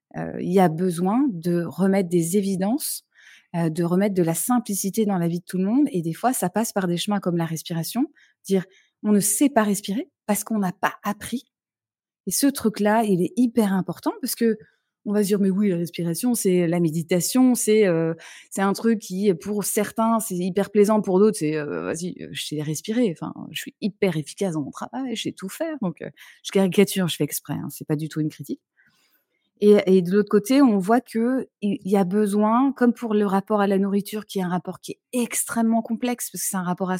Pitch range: 180-225 Hz